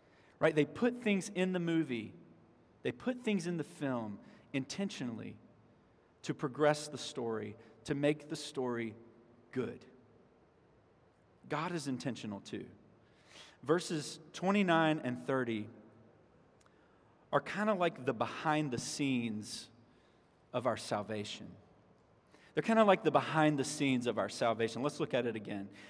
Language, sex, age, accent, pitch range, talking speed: English, male, 40-59, American, 125-155 Hz, 135 wpm